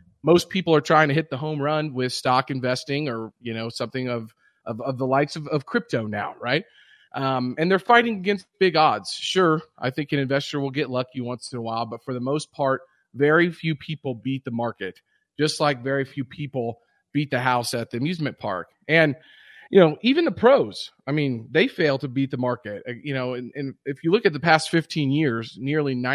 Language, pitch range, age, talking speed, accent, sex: English, 125-155 Hz, 30-49, 220 wpm, American, male